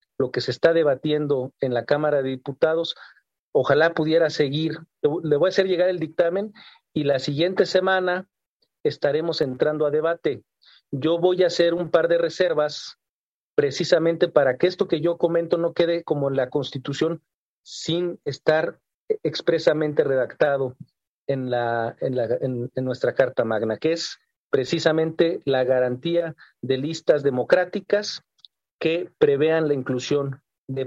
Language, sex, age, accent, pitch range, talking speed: Spanish, male, 50-69, Mexican, 140-170 Hz, 145 wpm